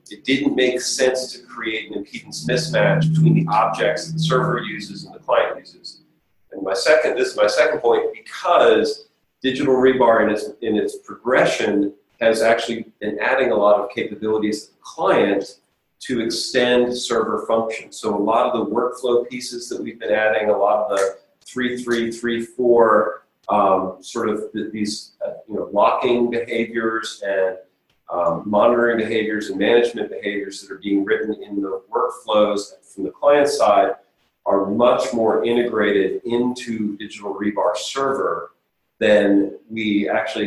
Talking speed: 160 wpm